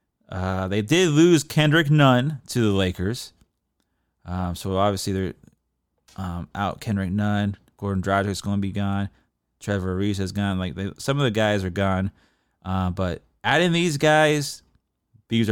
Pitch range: 95-130 Hz